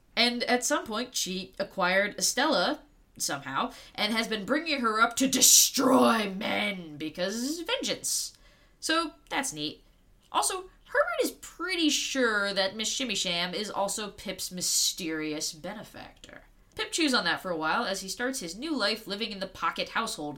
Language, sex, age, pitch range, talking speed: English, female, 20-39, 185-275 Hz, 160 wpm